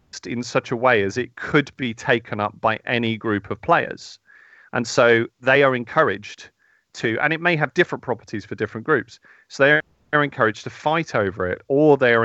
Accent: British